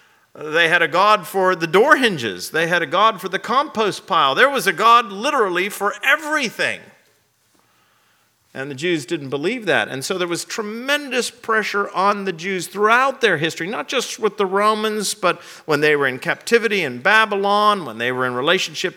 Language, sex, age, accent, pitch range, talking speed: English, male, 50-69, American, 150-215 Hz, 185 wpm